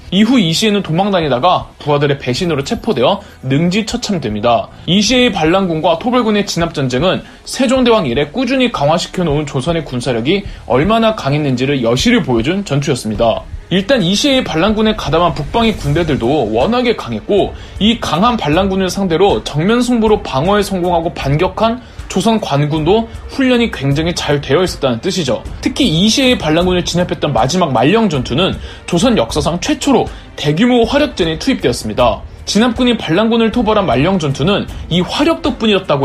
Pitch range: 145-230 Hz